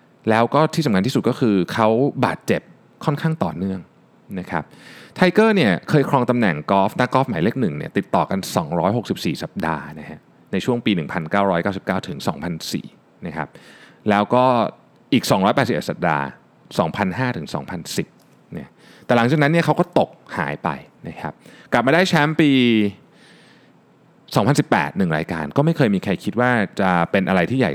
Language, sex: Thai, male